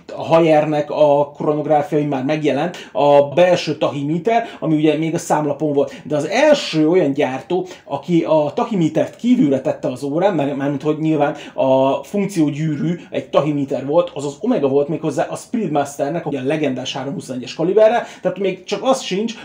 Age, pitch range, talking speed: 30-49, 150-185 Hz, 165 wpm